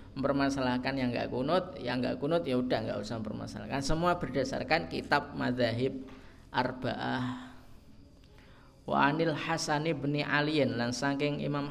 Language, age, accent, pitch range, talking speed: Indonesian, 20-39, native, 90-140 Hz, 125 wpm